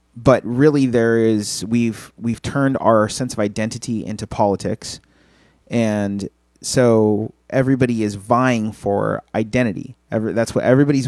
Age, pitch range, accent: 30-49, 100-120 Hz, American